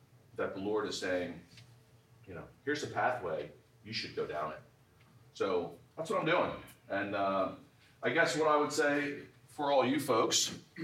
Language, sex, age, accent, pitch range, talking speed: English, male, 40-59, American, 110-135 Hz, 175 wpm